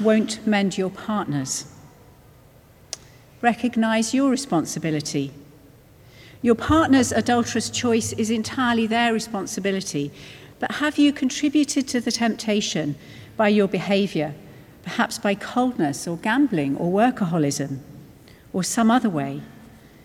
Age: 50-69